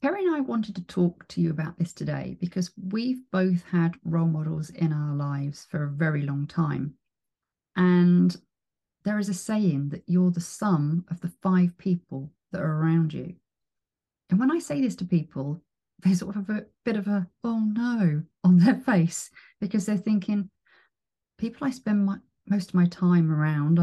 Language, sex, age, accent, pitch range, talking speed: English, female, 40-59, British, 165-215 Hz, 180 wpm